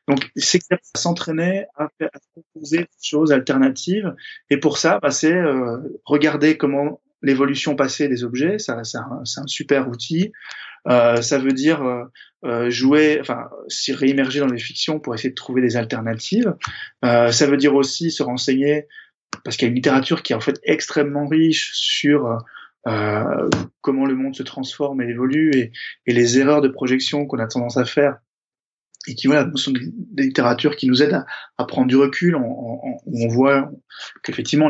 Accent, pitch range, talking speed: French, 125-150 Hz, 185 wpm